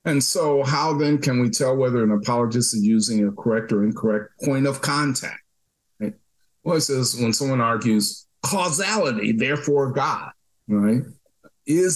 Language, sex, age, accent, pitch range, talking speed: English, male, 40-59, American, 105-130 Hz, 155 wpm